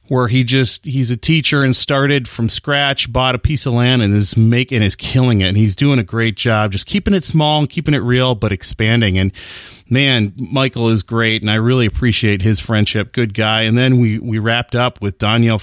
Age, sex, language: 30-49, male, English